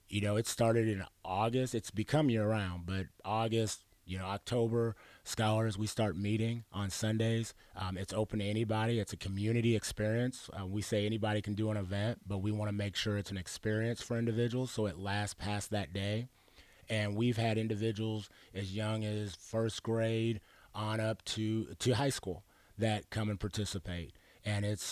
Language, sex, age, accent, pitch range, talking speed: English, male, 30-49, American, 100-110 Hz, 180 wpm